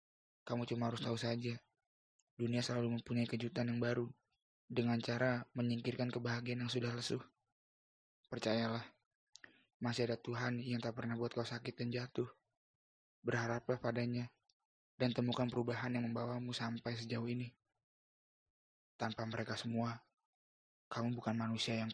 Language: Indonesian